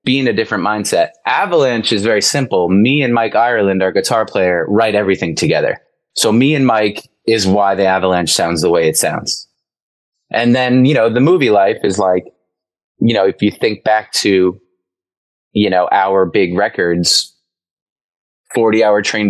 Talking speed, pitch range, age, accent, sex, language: 170 wpm, 90-120 Hz, 20-39, American, male, English